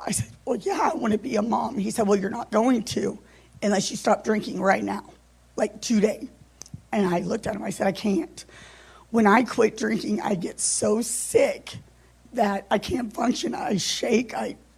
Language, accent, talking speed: English, American, 200 wpm